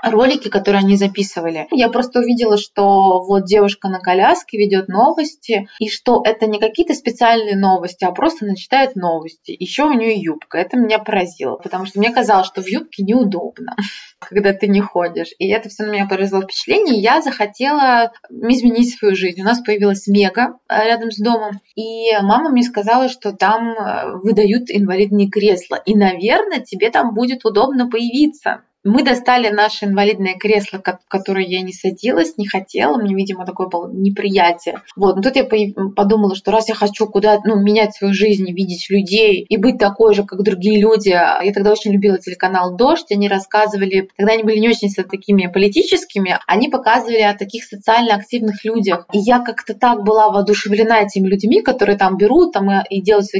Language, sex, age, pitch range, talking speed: Russian, female, 20-39, 195-230 Hz, 175 wpm